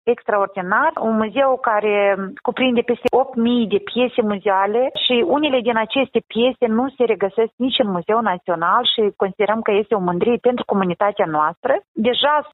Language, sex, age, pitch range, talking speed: Romanian, female, 30-49, 200-250 Hz, 155 wpm